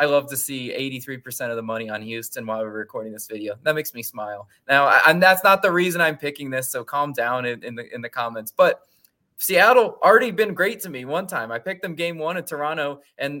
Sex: male